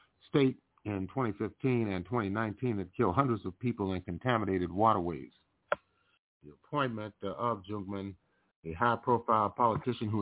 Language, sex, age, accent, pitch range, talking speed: English, male, 40-59, American, 95-120 Hz, 130 wpm